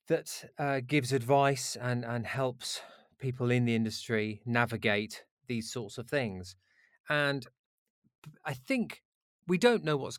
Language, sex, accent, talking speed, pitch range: English, male, British, 135 wpm, 110-140 Hz